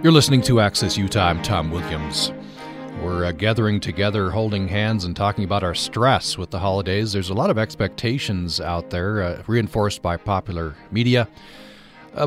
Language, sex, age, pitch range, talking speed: English, male, 40-59, 90-115 Hz, 170 wpm